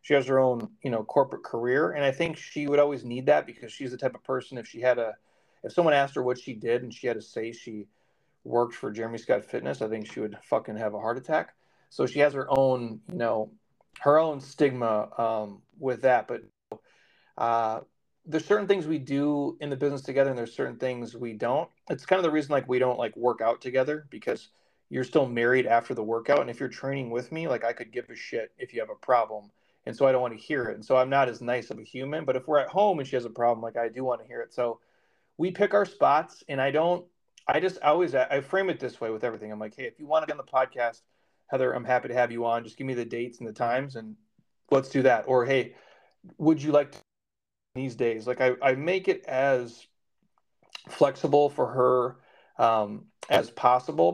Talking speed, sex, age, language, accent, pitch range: 245 wpm, male, 30-49, English, American, 115-150 Hz